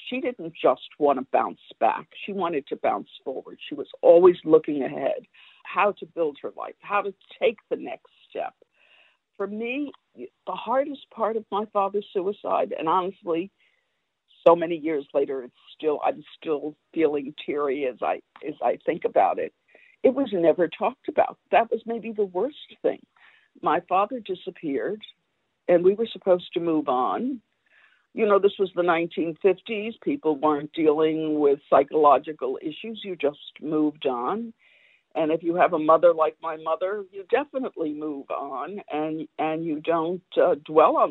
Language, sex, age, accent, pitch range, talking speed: Hebrew, female, 60-79, American, 160-270 Hz, 165 wpm